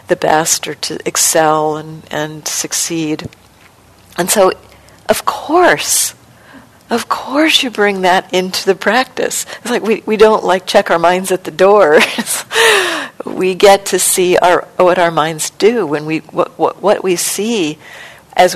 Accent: American